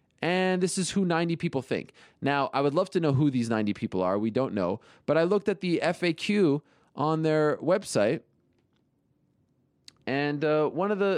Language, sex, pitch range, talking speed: English, male, 120-160 Hz, 190 wpm